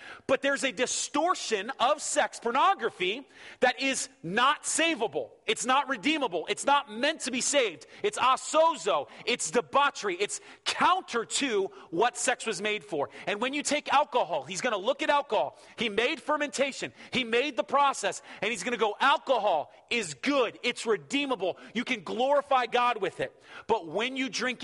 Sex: male